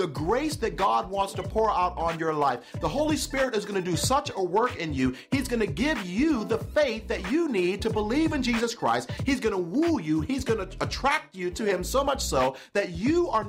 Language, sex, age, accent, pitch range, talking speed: English, male, 40-59, American, 205-285 Hz, 250 wpm